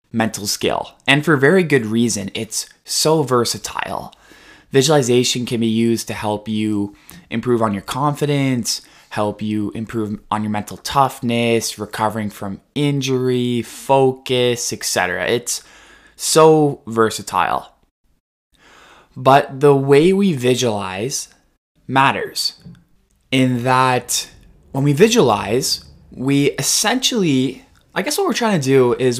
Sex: male